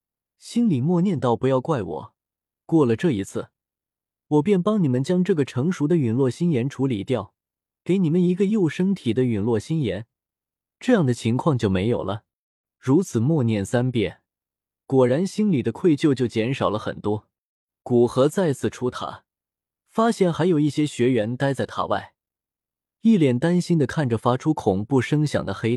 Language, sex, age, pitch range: Chinese, male, 20-39, 115-165 Hz